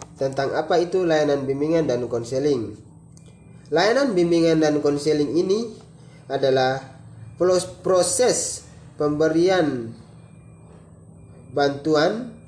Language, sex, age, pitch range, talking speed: Indonesian, male, 20-39, 130-165 Hz, 75 wpm